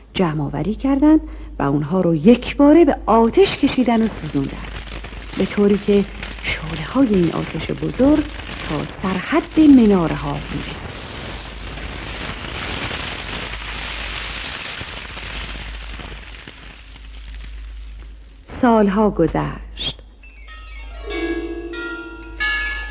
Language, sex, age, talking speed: Persian, female, 50-69, 65 wpm